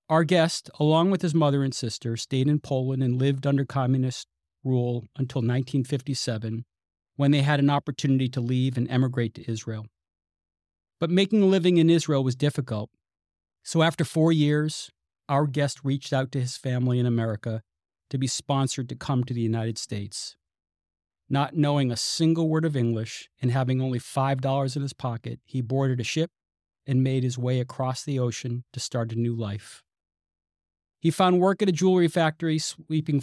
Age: 40-59